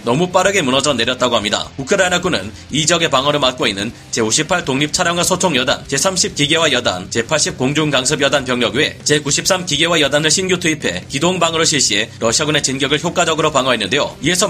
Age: 30-49